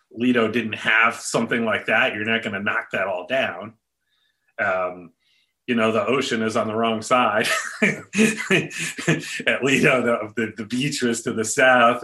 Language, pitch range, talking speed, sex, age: English, 115-135 Hz, 170 wpm, male, 40-59